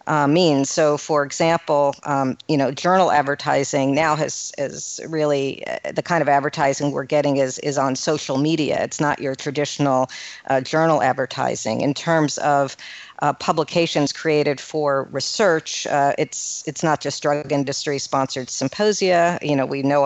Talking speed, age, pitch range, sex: 160 wpm, 50-69, 140-155 Hz, female